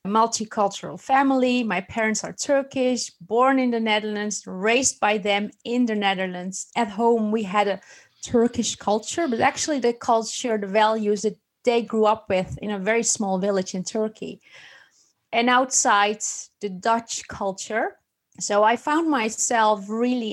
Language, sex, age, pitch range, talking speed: English, female, 30-49, 205-235 Hz, 150 wpm